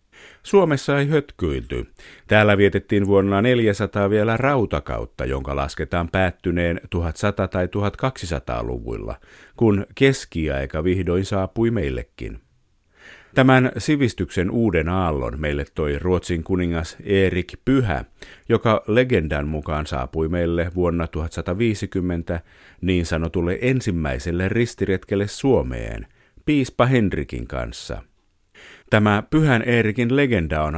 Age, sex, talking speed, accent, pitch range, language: 50-69, male, 95 wpm, native, 85-115 Hz, Finnish